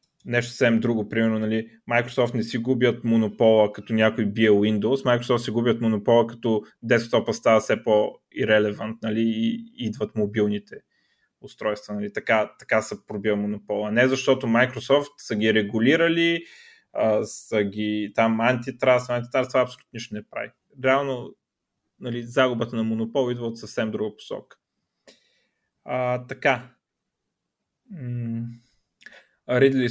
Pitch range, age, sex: 110-130 Hz, 30-49, male